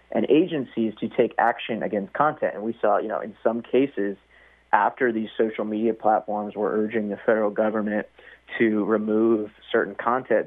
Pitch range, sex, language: 100-115 Hz, male, English